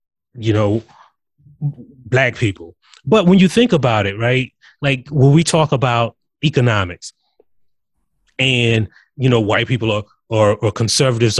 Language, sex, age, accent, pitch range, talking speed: English, male, 30-49, American, 110-155 Hz, 125 wpm